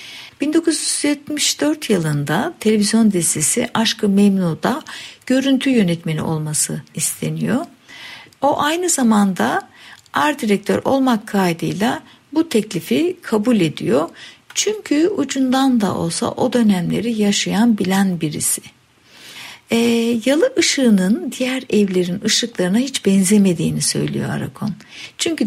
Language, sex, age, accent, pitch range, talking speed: Turkish, female, 60-79, native, 175-255 Hz, 95 wpm